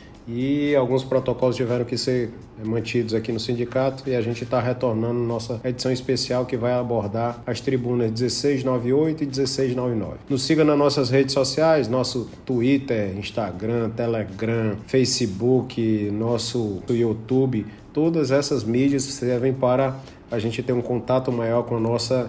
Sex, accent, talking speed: male, Brazilian, 145 wpm